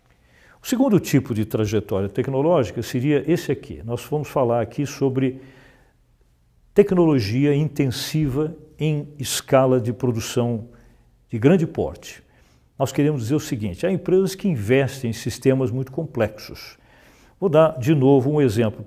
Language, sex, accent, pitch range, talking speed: Portuguese, male, Brazilian, 120-155 Hz, 135 wpm